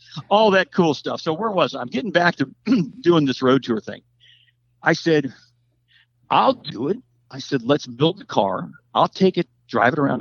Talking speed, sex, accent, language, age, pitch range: 200 wpm, male, American, English, 60-79, 120-175 Hz